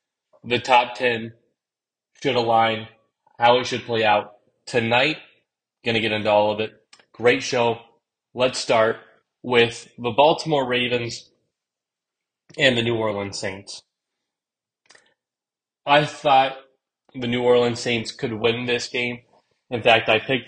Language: English